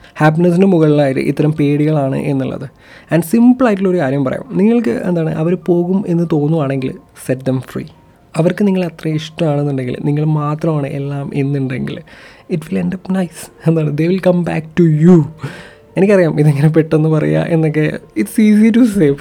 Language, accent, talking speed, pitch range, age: Malayalam, native, 145 wpm, 140-175 Hz, 20-39